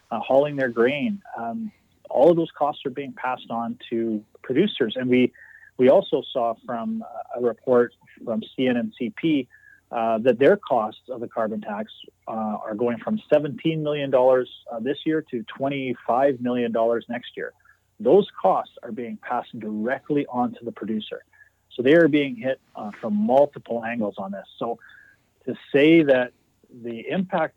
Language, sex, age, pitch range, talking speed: English, male, 30-49, 120-160 Hz, 160 wpm